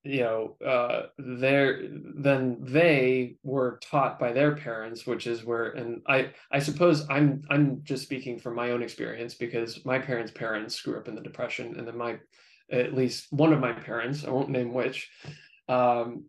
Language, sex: English, male